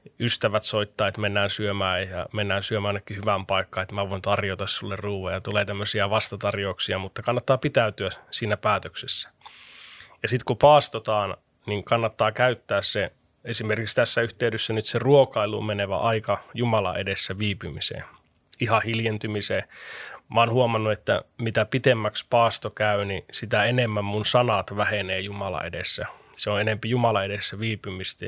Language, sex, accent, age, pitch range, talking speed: Finnish, male, native, 20-39, 100-115 Hz, 145 wpm